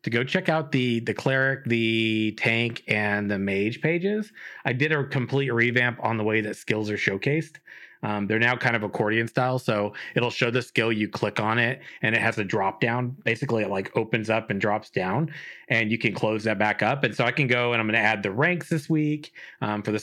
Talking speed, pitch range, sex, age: 235 wpm, 105-130 Hz, male, 30-49